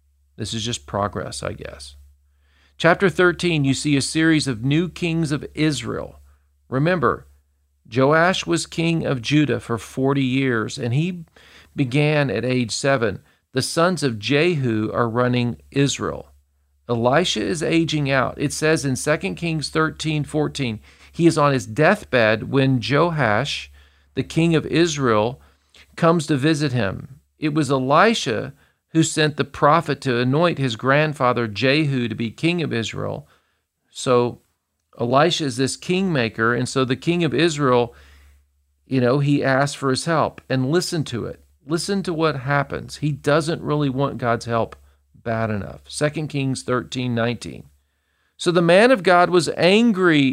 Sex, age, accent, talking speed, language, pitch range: male, 50-69, American, 150 wpm, English, 115-160 Hz